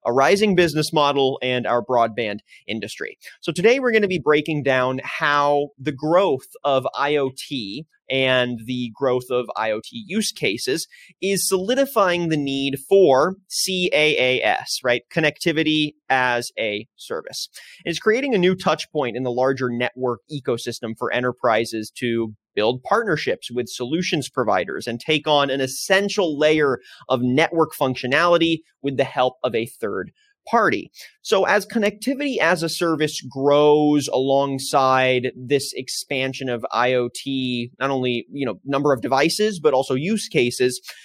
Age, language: 30-49, English